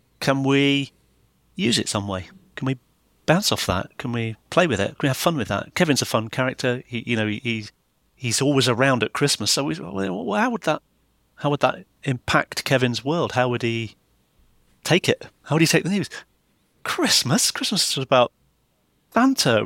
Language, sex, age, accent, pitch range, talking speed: English, male, 40-59, British, 125-170 Hz, 195 wpm